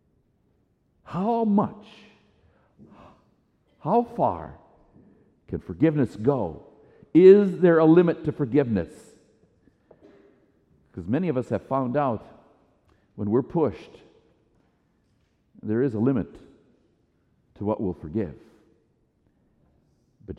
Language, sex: English, male